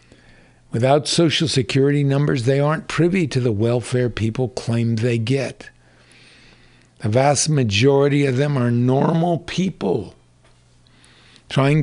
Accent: American